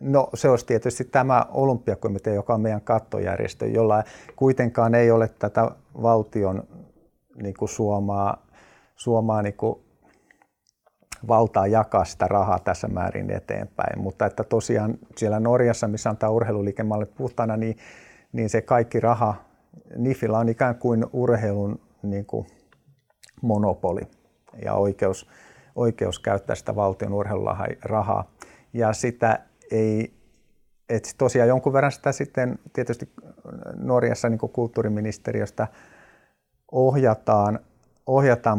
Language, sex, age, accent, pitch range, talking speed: Finnish, male, 50-69, native, 105-120 Hz, 110 wpm